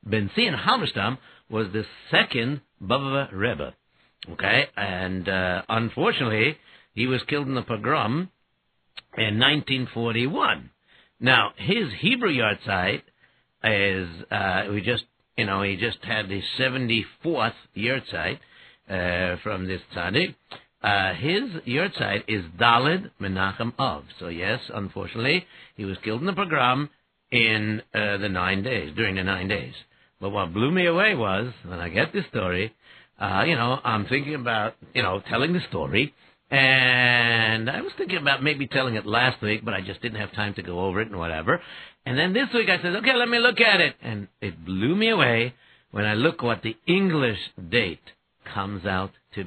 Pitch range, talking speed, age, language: 100-130 Hz, 165 wpm, 60-79, English